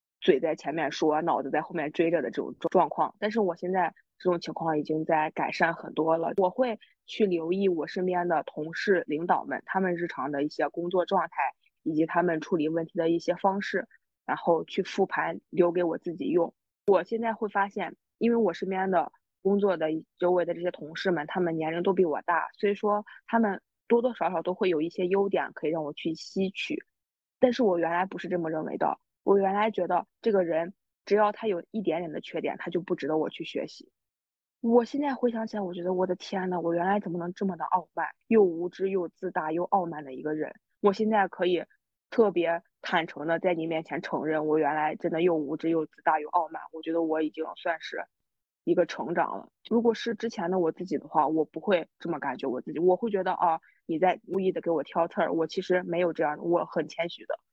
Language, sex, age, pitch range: Chinese, female, 20-39, 165-195 Hz